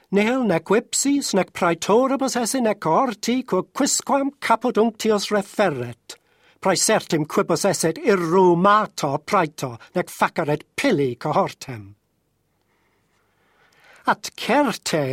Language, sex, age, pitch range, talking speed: English, male, 60-79, 180-260 Hz, 95 wpm